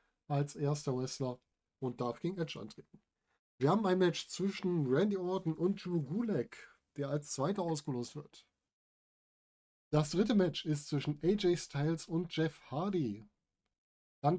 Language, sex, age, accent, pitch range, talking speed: German, male, 10-29, German, 135-175 Hz, 140 wpm